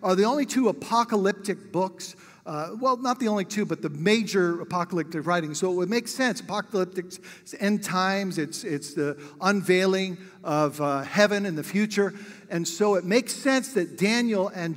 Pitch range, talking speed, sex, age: 165-210 Hz, 175 wpm, male, 50-69